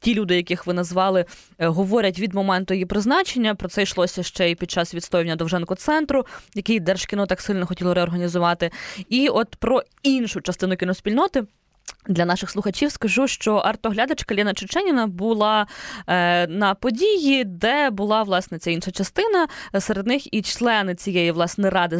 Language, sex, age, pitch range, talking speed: Ukrainian, female, 20-39, 175-230 Hz, 150 wpm